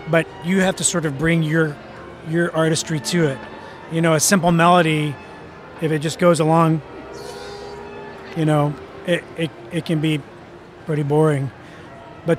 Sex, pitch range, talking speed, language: male, 150-170 Hz, 155 wpm, English